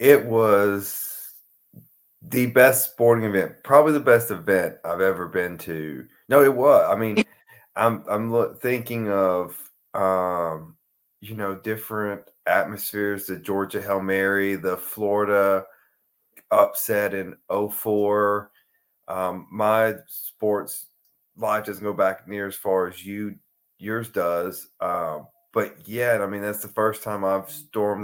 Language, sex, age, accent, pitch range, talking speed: English, male, 30-49, American, 100-130 Hz, 135 wpm